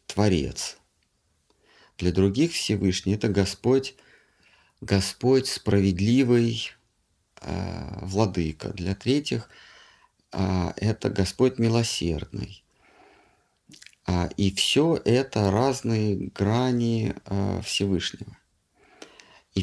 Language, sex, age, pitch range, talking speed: Russian, male, 50-69, 95-120 Hz, 80 wpm